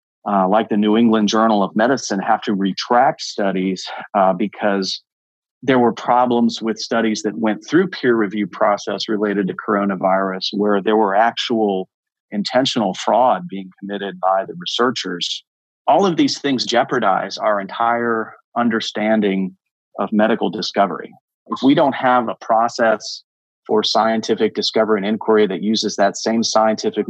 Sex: male